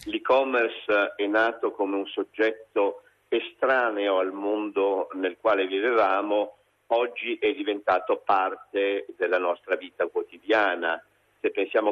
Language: Italian